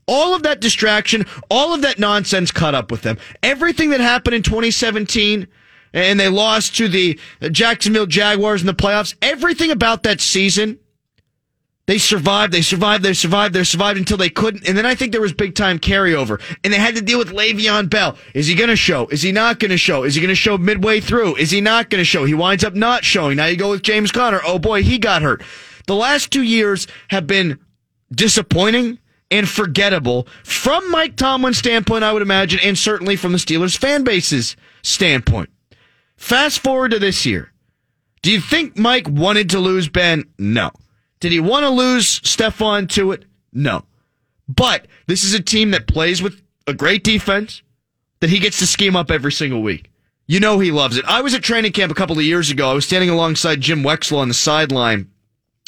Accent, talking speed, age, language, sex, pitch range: American, 205 wpm, 30-49, English, male, 160-220 Hz